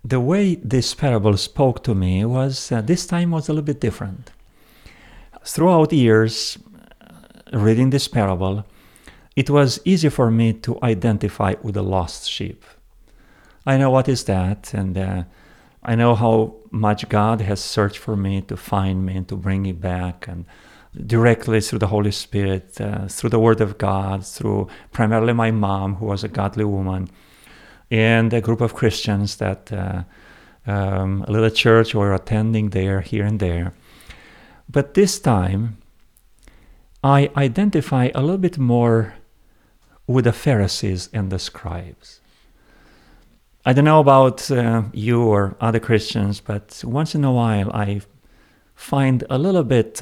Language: English